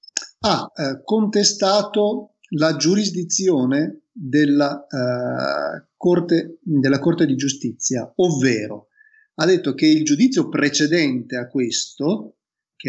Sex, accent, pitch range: male, native, 130-180 Hz